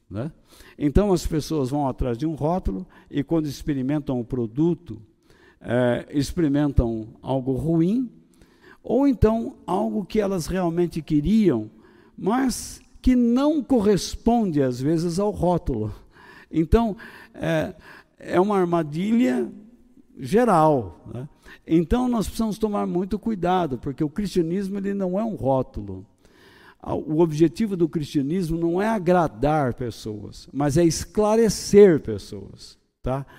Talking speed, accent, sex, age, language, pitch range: 115 wpm, Brazilian, male, 60-79, Portuguese, 130-190 Hz